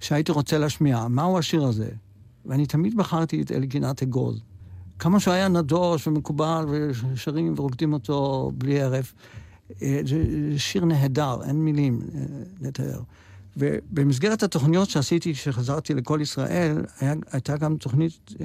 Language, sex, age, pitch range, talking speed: Hebrew, male, 60-79, 130-160 Hz, 125 wpm